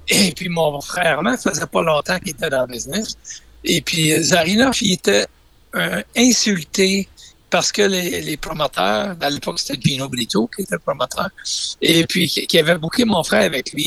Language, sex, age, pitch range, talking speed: French, male, 60-79, 160-210 Hz, 195 wpm